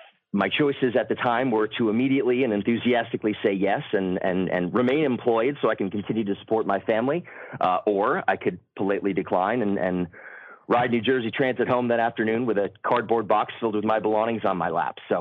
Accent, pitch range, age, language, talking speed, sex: American, 100-125 Hz, 40-59, English, 210 wpm, male